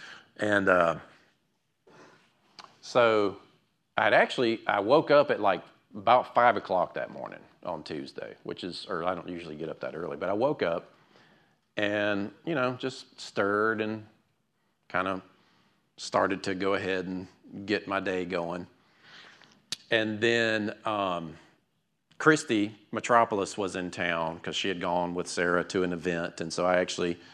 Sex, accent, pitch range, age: male, American, 90-115 Hz, 40-59